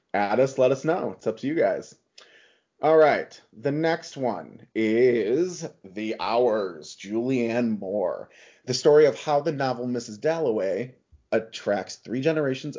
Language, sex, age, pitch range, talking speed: English, male, 30-49, 105-145 Hz, 145 wpm